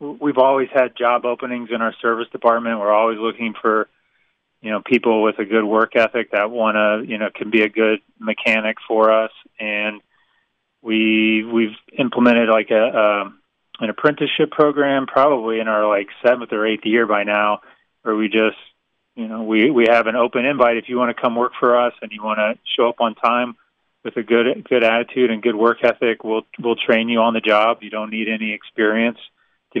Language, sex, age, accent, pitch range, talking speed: English, male, 30-49, American, 110-120 Hz, 205 wpm